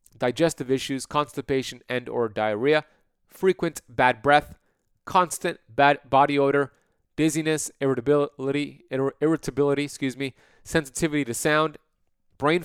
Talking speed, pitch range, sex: 105 wpm, 125-155 Hz, male